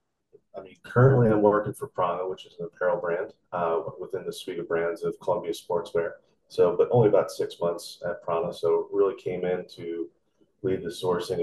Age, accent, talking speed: 30-49, American, 195 wpm